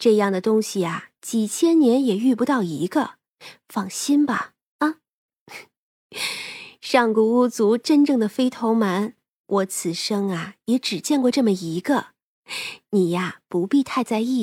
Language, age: Chinese, 20-39